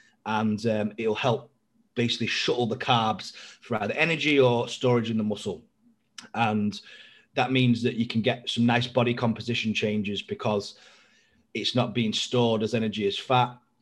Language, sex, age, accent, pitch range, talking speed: English, male, 30-49, British, 110-130 Hz, 160 wpm